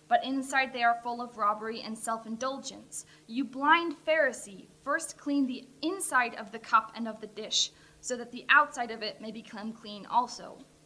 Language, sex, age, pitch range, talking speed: English, female, 10-29, 225-275 Hz, 180 wpm